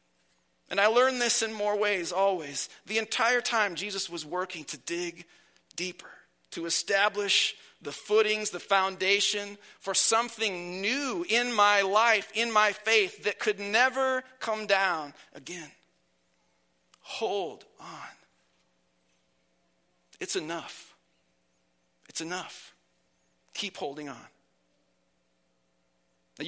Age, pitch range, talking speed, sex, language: 40-59, 150-215 Hz, 110 wpm, male, English